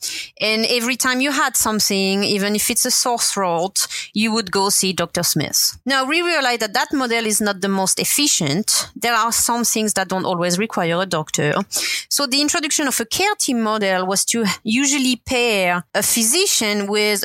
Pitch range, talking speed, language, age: 195-250 Hz, 190 wpm, English, 30-49